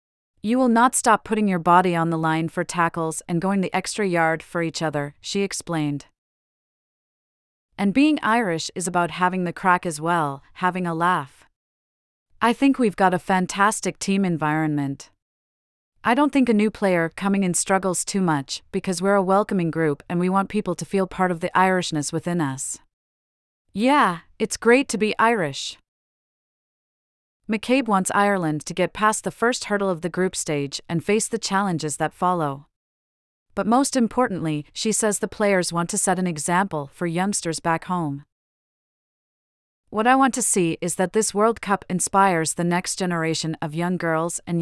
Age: 30-49